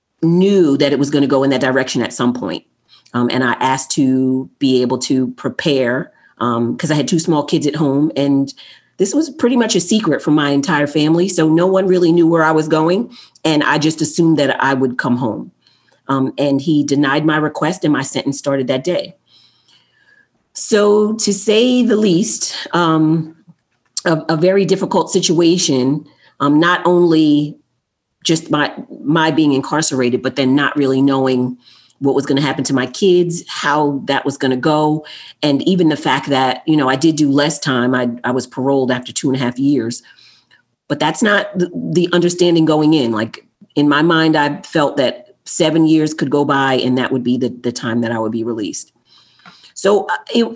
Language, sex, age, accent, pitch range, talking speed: English, female, 40-59, American, 135-175 Hz, 195 wpm